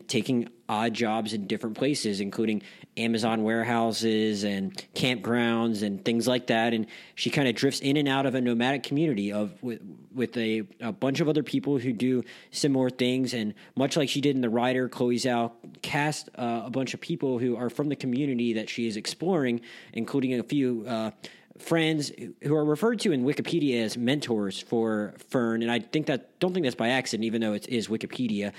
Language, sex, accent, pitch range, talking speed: English, male, American, 115-140 Hz, 195 wpm